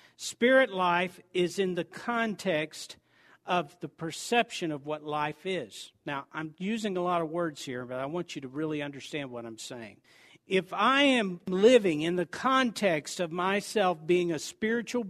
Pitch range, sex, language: 175-235 Hz, male, English